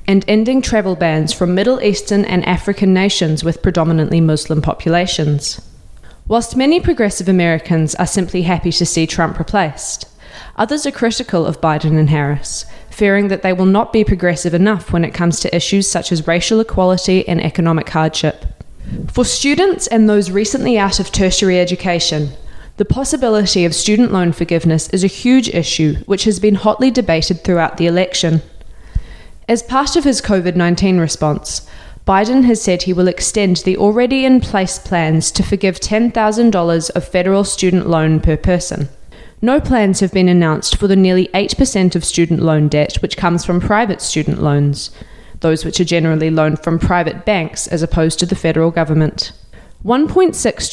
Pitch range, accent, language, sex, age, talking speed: 160-205 Hz, Australian, English, female, 20-39, 160 wpm